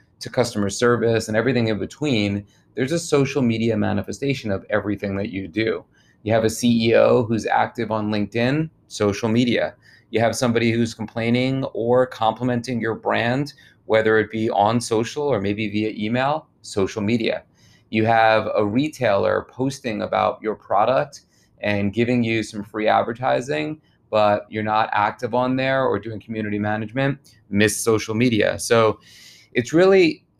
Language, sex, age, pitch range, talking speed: English, male, 30-49, 105-120 Hz, 150 wpm